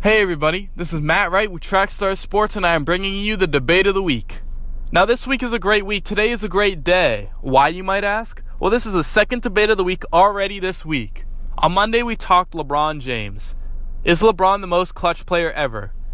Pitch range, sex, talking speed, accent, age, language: 135-195 Hz, male, 225 wpm, American, 20-39, English